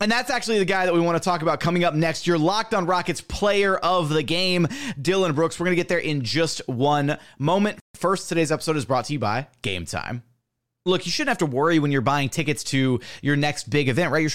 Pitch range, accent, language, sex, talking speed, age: 140-175 Hz, American, English, male, 250 wpm, 30-49